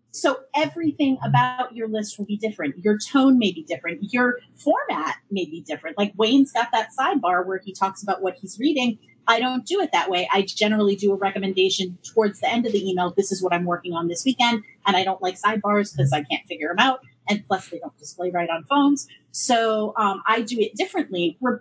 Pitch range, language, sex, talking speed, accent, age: 185-245 Hz, English, female, 225 wpm, American, 30-49